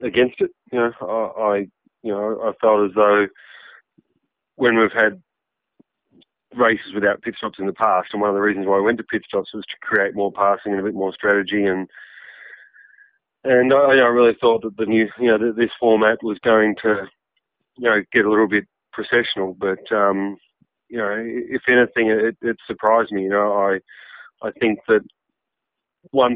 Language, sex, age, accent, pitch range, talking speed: English, male, 40-59, Australian, 100-110 Hz, 195 wpm